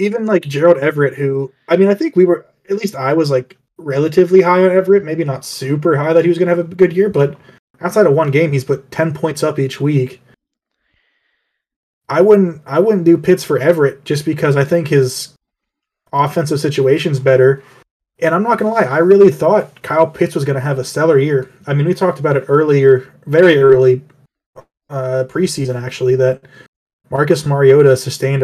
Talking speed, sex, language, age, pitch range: 195 wpm, male, English, 20-39, 130-165 Hz